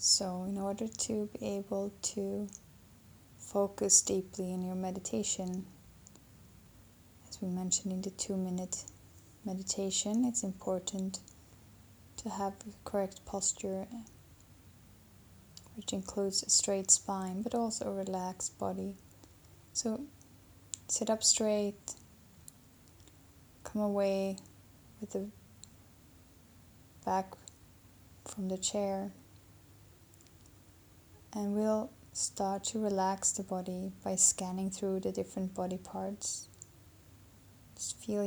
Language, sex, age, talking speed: English, female, 10-29, 100 wpm